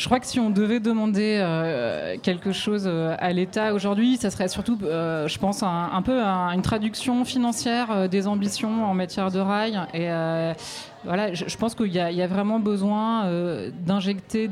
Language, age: French, 20-39